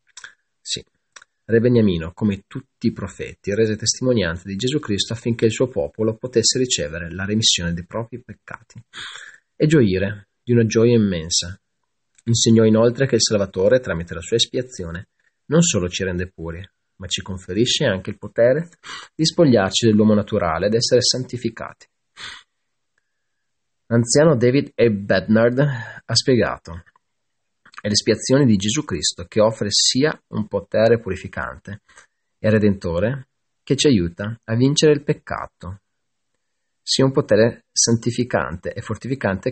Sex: male